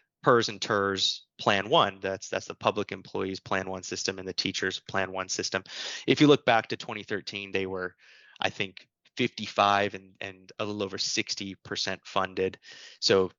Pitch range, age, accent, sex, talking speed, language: 95-115 Hz, 30-49, American, male, 170 wpm, English